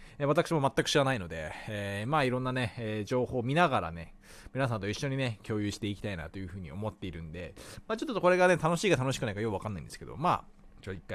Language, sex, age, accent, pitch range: Japanese, male, 20-39, native, 95-140 Hz